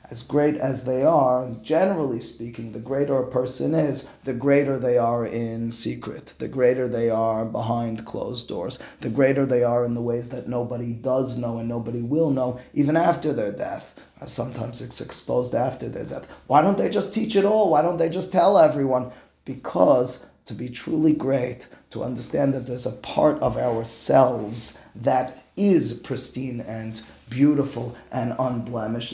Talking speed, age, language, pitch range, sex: 170 wpm, 30-49, English, 115-130 Hz, male